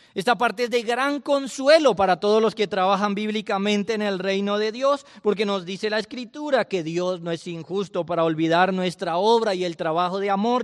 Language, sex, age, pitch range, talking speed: Spanish, male, 30-49, 120-205 Hz, 205 wpm